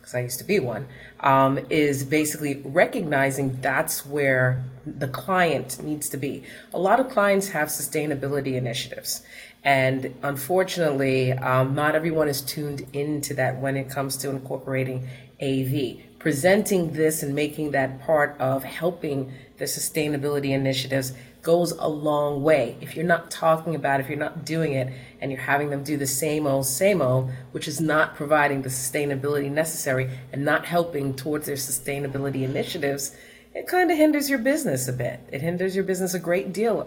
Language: English